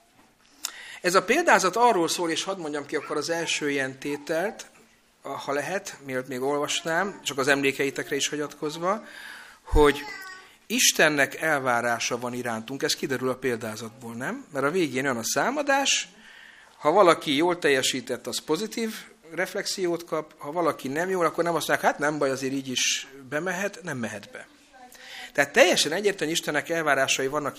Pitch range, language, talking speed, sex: 130-195 Hz, Hungarian, 155 wpm, male